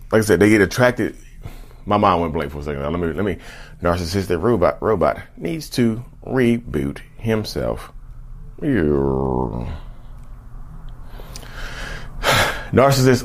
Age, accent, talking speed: 30-49, American, 120 wpm